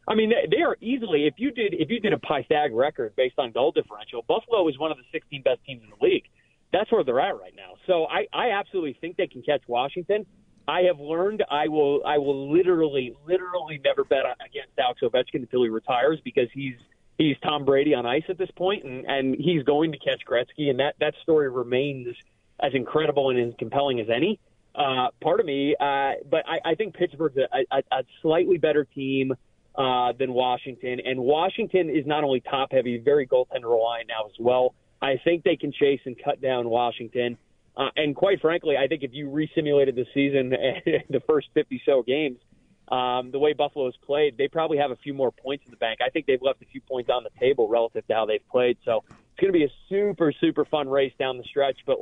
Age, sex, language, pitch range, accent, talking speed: 30-49, male, English, 130-180 Hz, American, 220 wpm